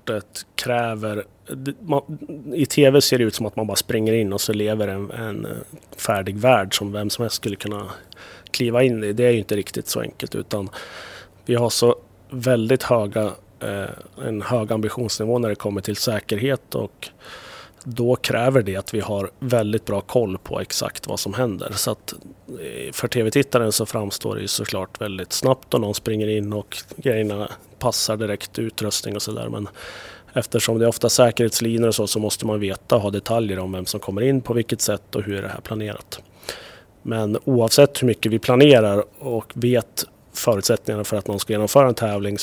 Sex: male